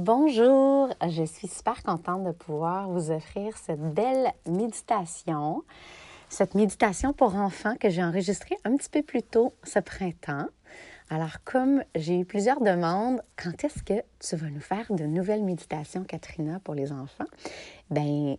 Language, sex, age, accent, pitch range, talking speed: French, female, 30-49, Canadian, 155-195 Hz, 155 wpm